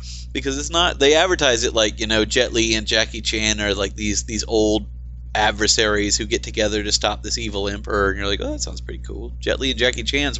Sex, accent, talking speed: male, American, 235 wpm